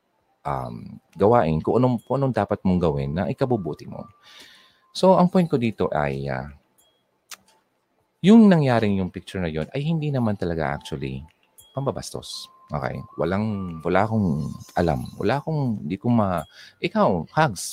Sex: male